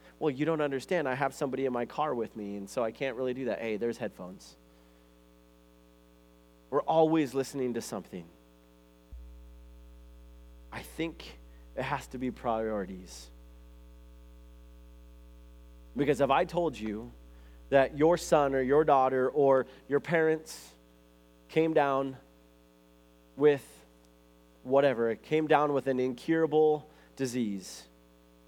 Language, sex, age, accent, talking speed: English, male, 30-49, American, 125 wpm